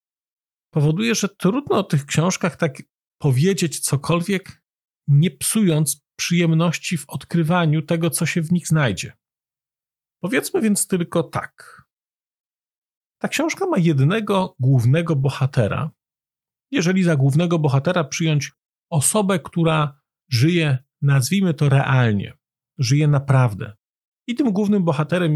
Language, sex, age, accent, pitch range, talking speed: Polish, male, 40-59, native, 130-170 Hz, 110 wpm